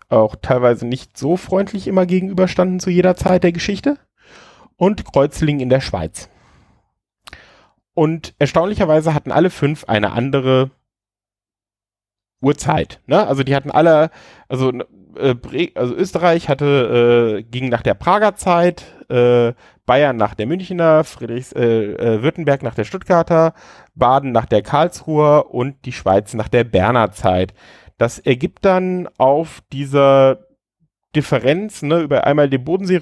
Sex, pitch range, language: male, 120-165 Hz, German